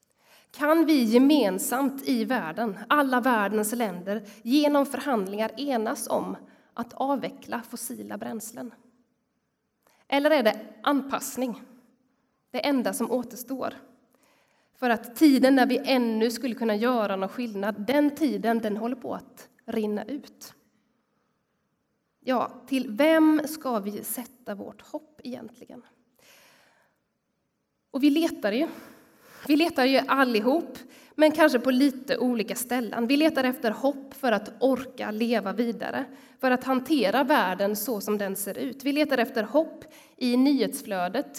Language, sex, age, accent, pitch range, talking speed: Swedish, female, 20-39, native, 230-275 Hz, 130 wpm